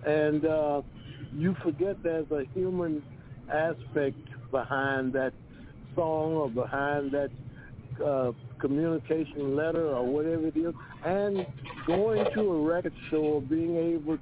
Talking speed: 120 wpm